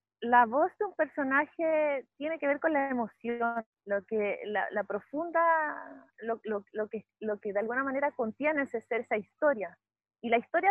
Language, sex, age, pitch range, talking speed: Spanish, female, 30-49, 230-295 Hz, 185 wpm